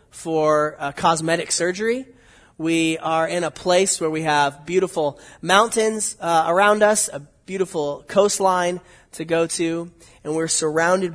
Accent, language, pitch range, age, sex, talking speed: American, English, 160-195 Hz, 20-39, male, 140 wpm